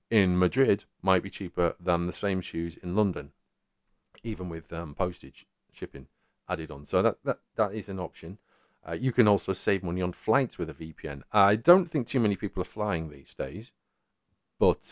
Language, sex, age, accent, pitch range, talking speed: English, male, 40-59, British, 85-105 Hz, 190 wpm